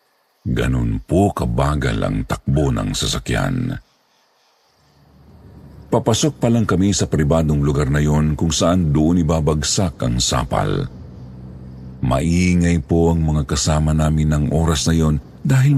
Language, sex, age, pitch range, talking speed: Filipino, male, 50-69, 75-100 Hz, 120 wpm